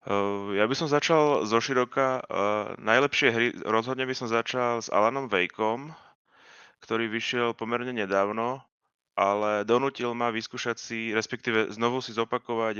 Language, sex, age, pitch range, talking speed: Slovak, male, 20-39, 105-120 Hz, 140 wpm